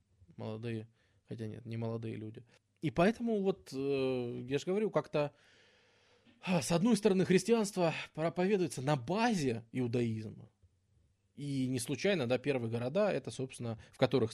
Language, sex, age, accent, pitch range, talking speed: Russian, male, 20-39, native, 115-145 Hz, 125 wpm